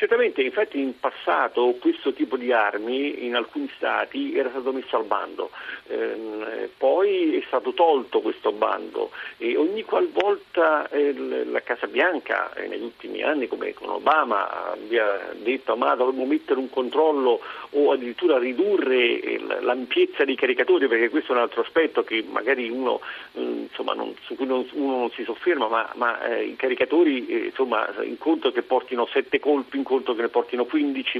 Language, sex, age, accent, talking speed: Italian, male, 50-69, native, 165 wpm